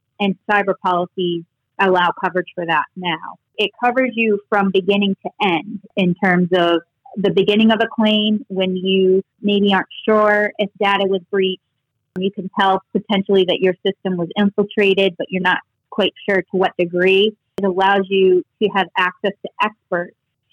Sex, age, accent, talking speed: female, 30-49, American, 165 wpm